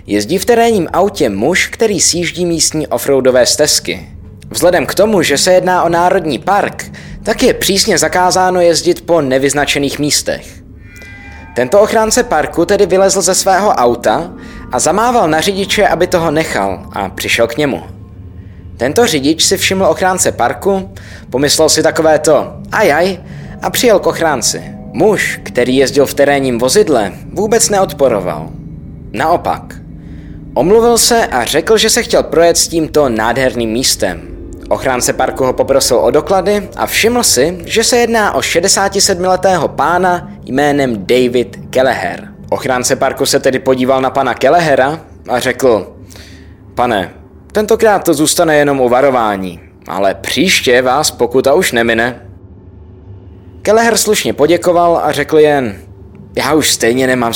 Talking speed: 140 wpm